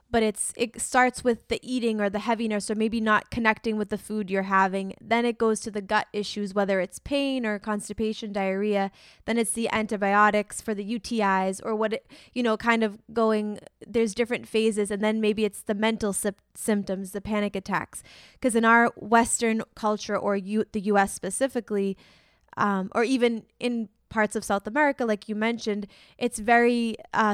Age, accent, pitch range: 20-39, American, 205-235 Hz